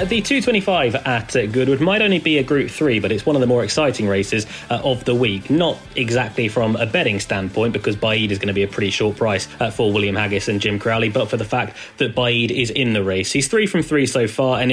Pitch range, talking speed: 110-135 Hz, 245 wpm